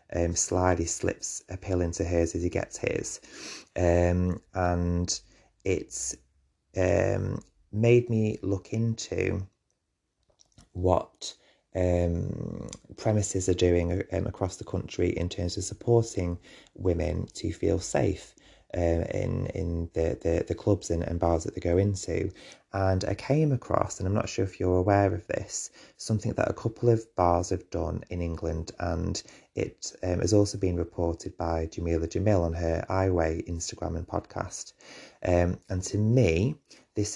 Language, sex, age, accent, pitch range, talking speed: English, male, 30-49, British, 85-100 Hz, 150 wpm